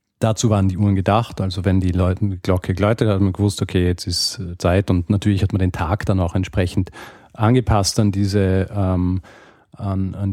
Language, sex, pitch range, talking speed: German, male, 95-115 Hz, 205 wpm